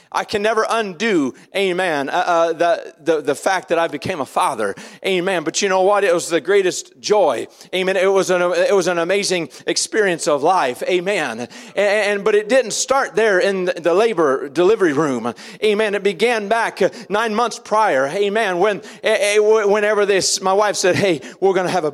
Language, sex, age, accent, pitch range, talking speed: English, male, 40-59, American, 185-245 Hz, 195 wpm